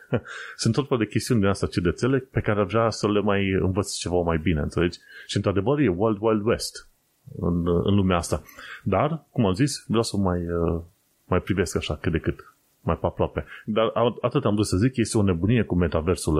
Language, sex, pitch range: Romanian, male, 90-120 Hz